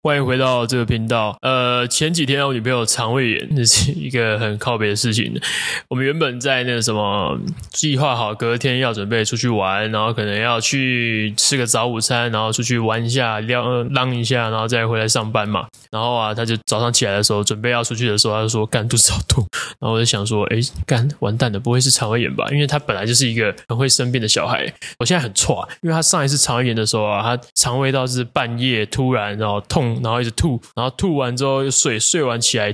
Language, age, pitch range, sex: Chinese, 20-39, 110-125 Hz, male